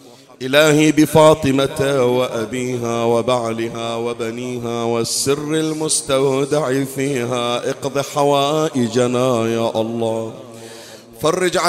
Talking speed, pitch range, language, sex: 65 wpm, 125-155 Hz, Arabic, male